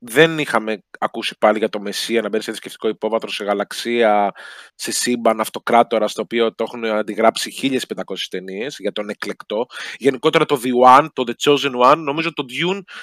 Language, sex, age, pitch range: Greek, male, 20-39, 115-160 Hz